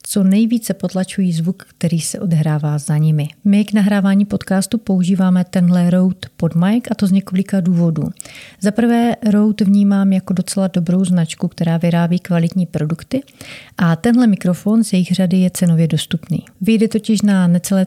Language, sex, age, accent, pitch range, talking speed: Czech, female, 40-59, native, 170-200 Hz, 160 wpm